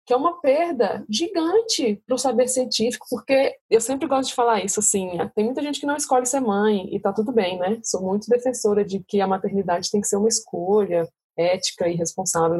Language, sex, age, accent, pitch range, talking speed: Portuguese, female, 20-39, Brazilian, 205-260 Hz, 210 wpm